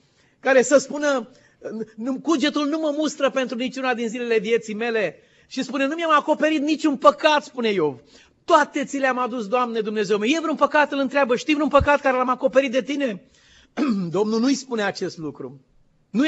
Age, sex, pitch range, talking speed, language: 30-49, male, 200-270 Hz, 175 wpm, Romanian